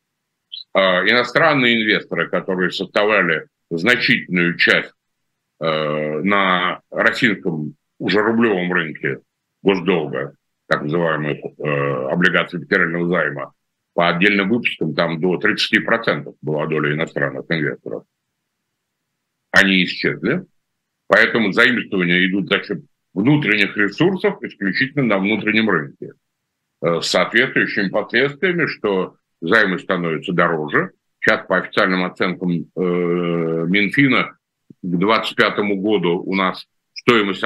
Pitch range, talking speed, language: 85-110 Hz, 100 wpm, Russian